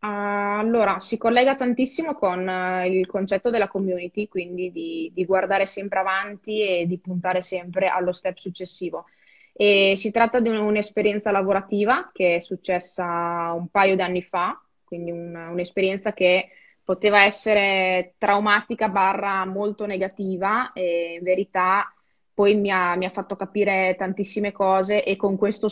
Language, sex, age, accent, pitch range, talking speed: Italian, female, 20-39, native, 180-200 Hz, 140 wpm